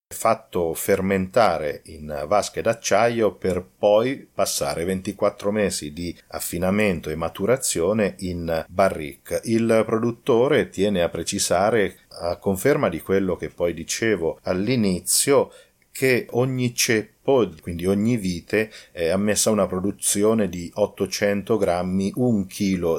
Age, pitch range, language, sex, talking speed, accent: 40-59, 85-105 Hz, Italian, male, 115 wpm, native